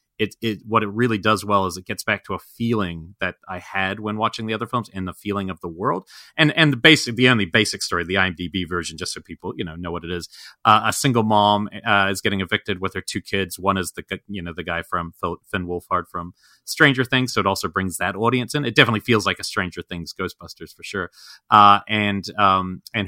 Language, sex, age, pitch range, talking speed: English, male, 30-49, 90-105 Hz, 245 wpm